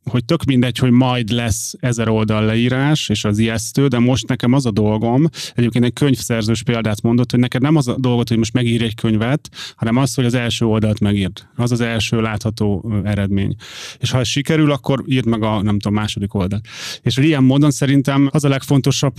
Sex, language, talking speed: male, Hungarian, 205 wpm